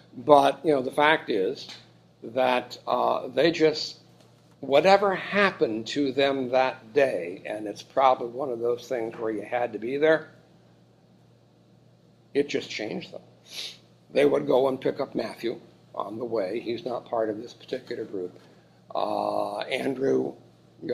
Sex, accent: male, American